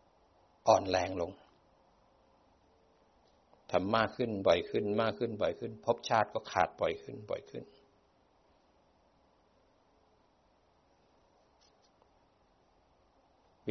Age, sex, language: 60-79, male, Thai